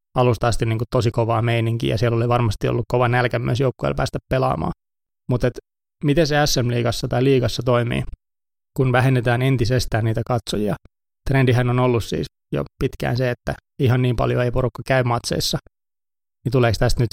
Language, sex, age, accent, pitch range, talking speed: Finnish, male, 20-39, native, 115-130 Hz, 170 wpm